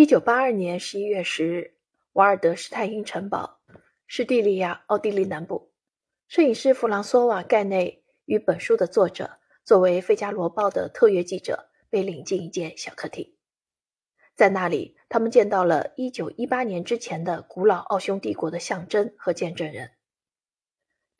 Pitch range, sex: 185-255 Hz, female